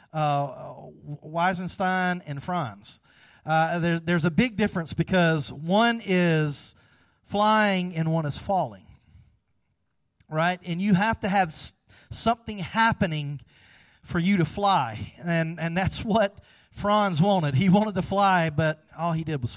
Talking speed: 140 wpm